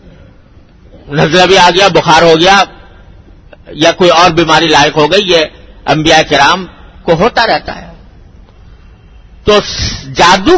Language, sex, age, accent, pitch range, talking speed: English, male, 50-69, Indian, 125-195 Hz, 130 wpm